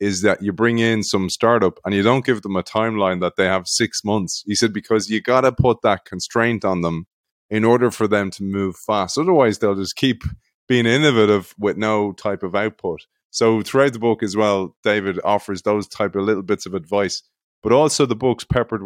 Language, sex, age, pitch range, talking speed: English, male, 20-39, 100-115 Hz, 215 wpm